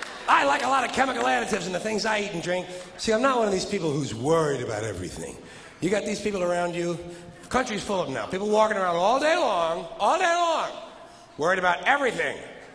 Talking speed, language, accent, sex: 230 wpm, English, American, male